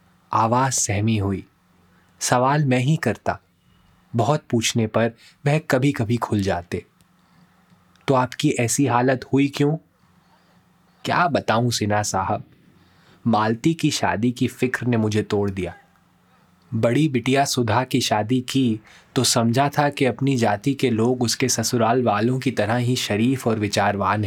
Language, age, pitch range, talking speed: Hindi, 20-39, 110-140 Hz, 140 wpm